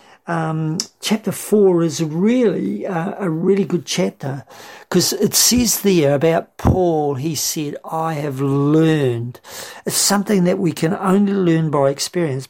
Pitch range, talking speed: 145-190 Hz, 145 wpm